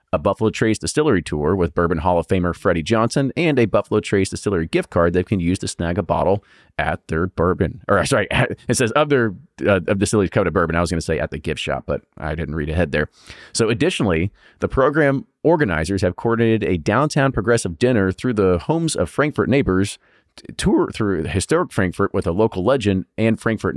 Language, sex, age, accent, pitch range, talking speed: English, male, 30-49, American, 90-120 Hz, 205 wpm